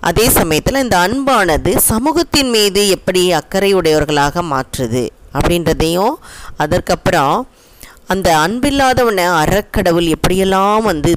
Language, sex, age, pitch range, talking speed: Tamil, female, 20-39, 155-220 Hz, 85 wpm